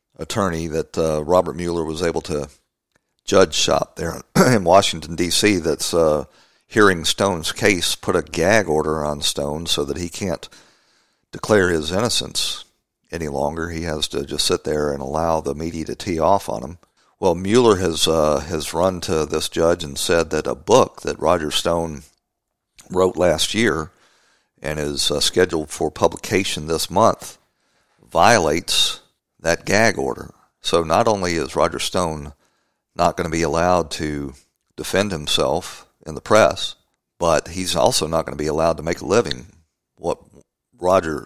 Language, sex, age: English, male, 50-69